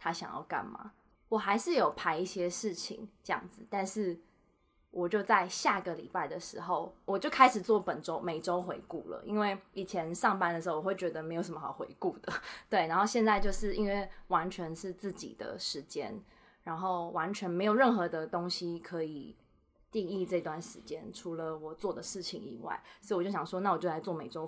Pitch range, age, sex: 175-215 Hz, 20-39, female